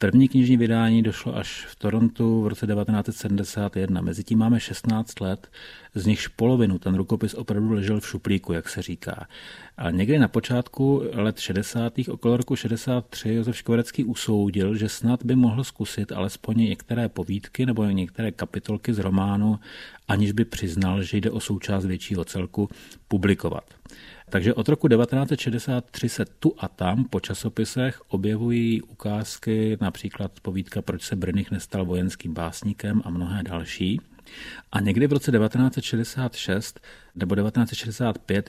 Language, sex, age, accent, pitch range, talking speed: Czech, male, 40-59, native, 100-115 Hz, 140 wpm